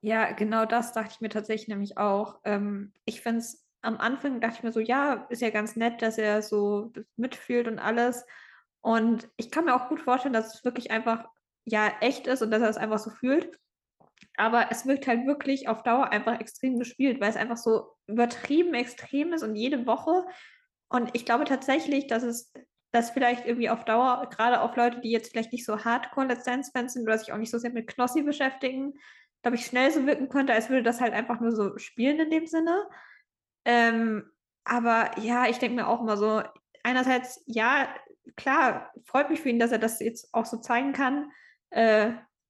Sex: female